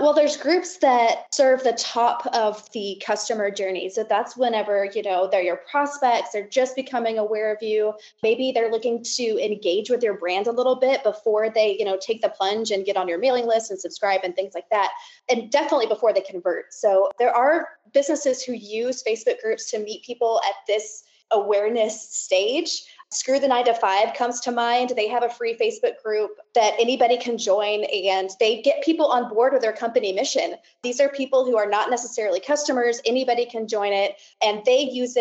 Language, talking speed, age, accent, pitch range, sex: English, 200 wpm, 20-39, American, 210-260 Hz, female